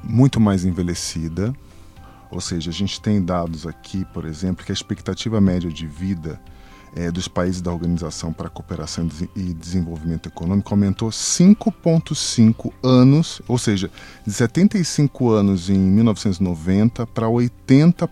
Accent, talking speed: Brazilian, 125 wpm